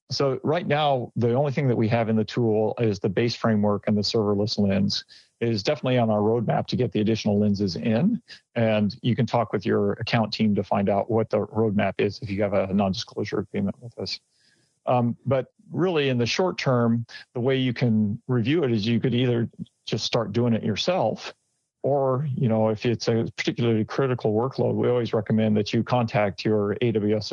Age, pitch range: 40-59, 110-125 Hz